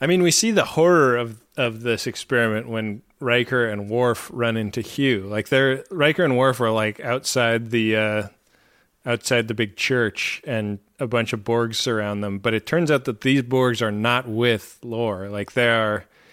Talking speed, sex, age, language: 190 wpm, male, 30-49, English